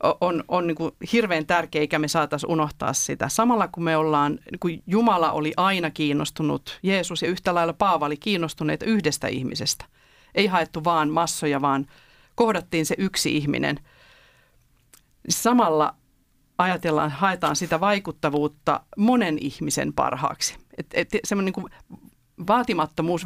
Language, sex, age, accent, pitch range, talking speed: Finnish, female, 40-59, native, 155-185 Hz, 135 wpm